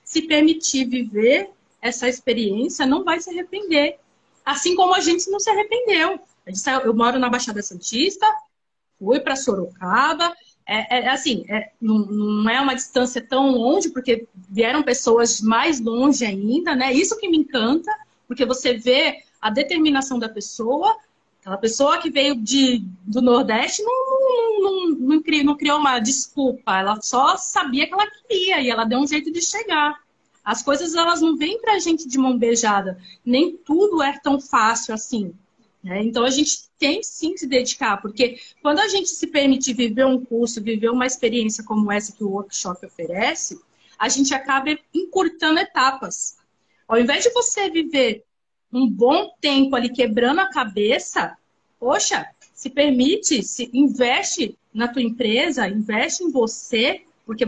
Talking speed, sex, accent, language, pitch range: 155 wpm, female, Brazilian, Portuguese, 235-320 Hz